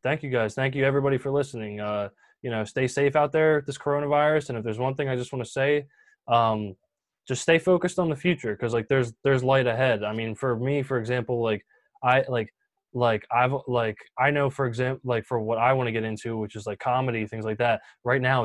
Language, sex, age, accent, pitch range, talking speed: English, male, 20-39, American, 115-145 Hz, 235 wpm